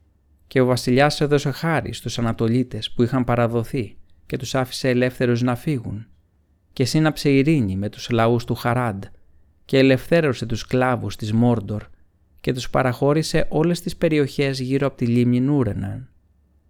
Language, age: Greek, 30-49